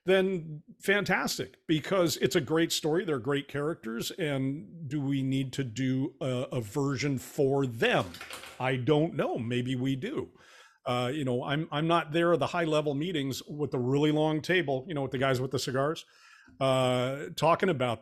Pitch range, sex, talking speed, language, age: 125-160 Hz, male, 185 wpm, English, 50-69